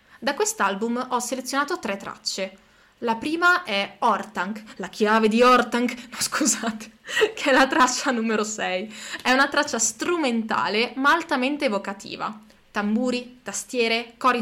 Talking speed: 135 wpm